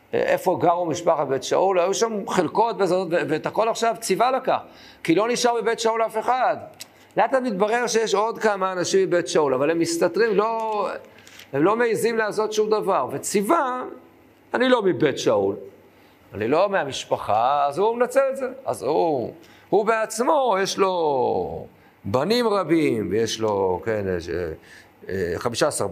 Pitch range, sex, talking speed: 155-225 Hz, male, 145 wpm